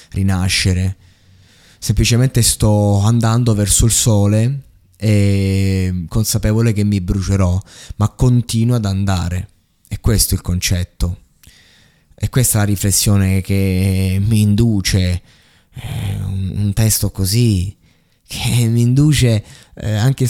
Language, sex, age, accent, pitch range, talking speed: Italian, male, 20-39, native, 95-115 Hz, 110 wpm